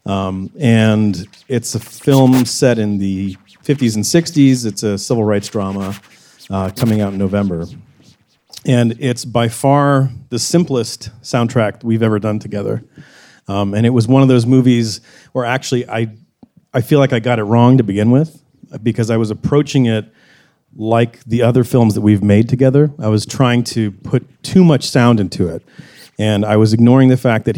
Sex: male